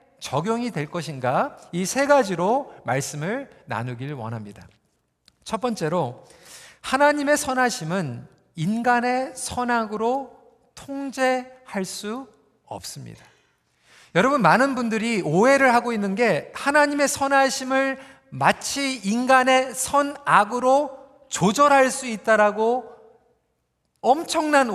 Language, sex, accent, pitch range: Korean, male, native, 215-275 Hz